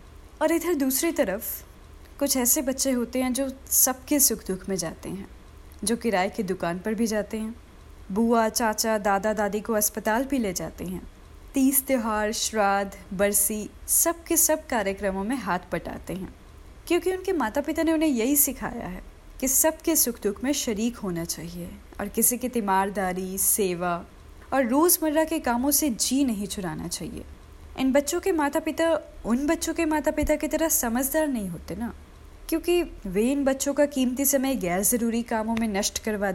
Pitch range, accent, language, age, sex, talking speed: 205-280 Hz, native, Hindi, 20-39, female, 175 wpm